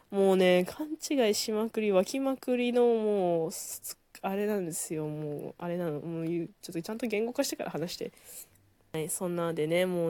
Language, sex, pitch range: Japanese, female, 165-245 Hz